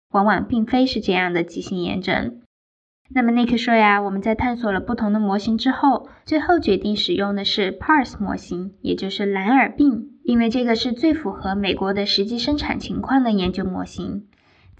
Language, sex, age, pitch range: Chinese, female, 10-29, 200-255 Hz